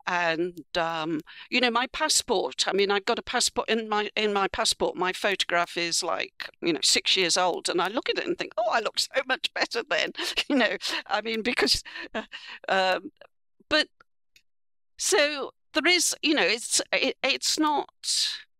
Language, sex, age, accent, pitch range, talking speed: English, female, 50-69, British, 200-290 Hz, 180 wpm